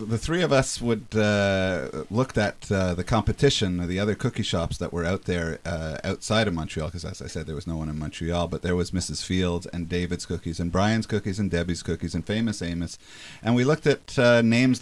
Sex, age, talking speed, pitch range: male, 40-59, 230 wpm, 85-110 Hz